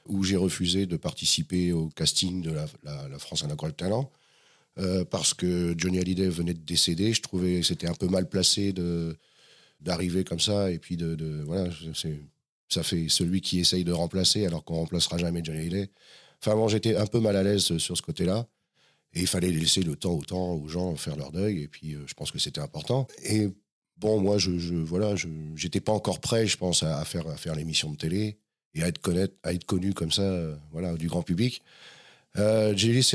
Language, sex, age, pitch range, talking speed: French, male, 40-59, 85-105 Hz, 225 wpm